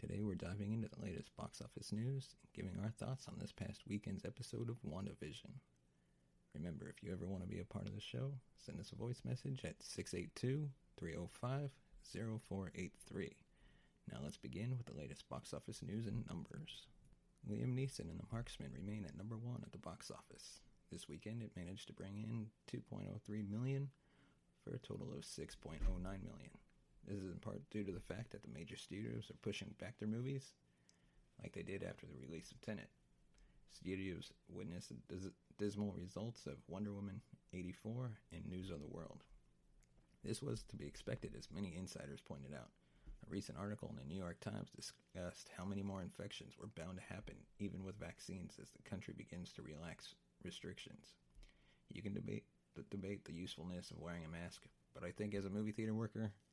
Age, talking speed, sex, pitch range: 30-49, 185 wpm, male, 85-110 Hz